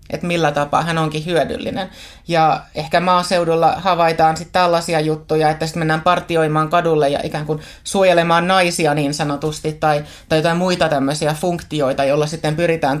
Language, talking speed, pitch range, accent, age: Finnish, 155 wpm, 150-170 Hz, native, 30-49